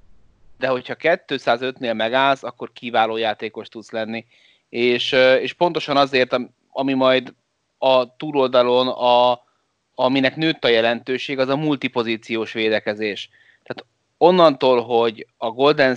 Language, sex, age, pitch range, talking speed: Hungarian, male, 30-49, 110-130 Hz, 115 wpm